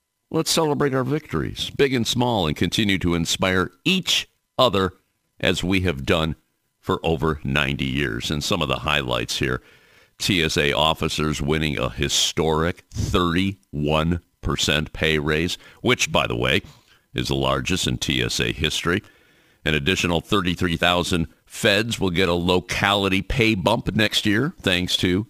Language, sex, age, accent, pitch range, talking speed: English, male, 50-69, American, 80-110 Hz, 140 wpm